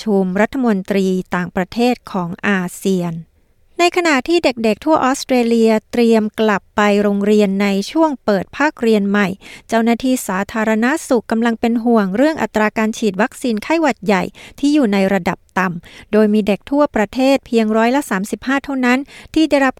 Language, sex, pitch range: Thai, female, 200-245 Hz